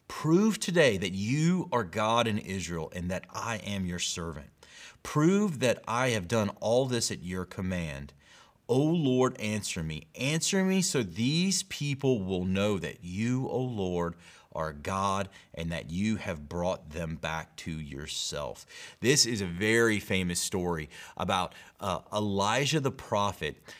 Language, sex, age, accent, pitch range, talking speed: English, male, 30-49, American, 95-130 Hz, 160 wpm